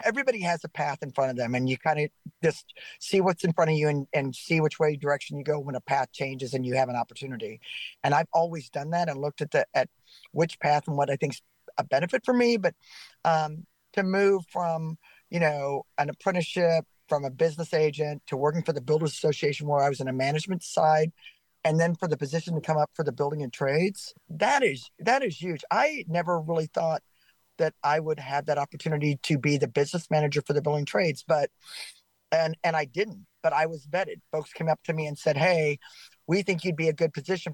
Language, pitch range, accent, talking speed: English, 145-170 Hz, American, 230 wpm